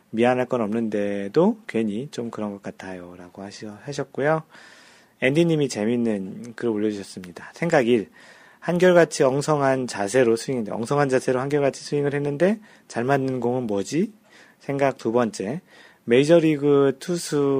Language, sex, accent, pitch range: Korean, male, native, 110-145 Hz